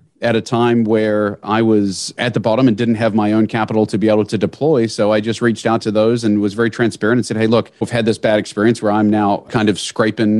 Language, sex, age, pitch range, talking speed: English, male, 40-59, 105-125 Hz, 265 wpm